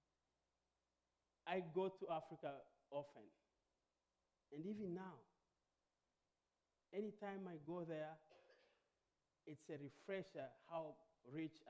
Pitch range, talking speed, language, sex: 135-185 Hz, 85 wpm, English, male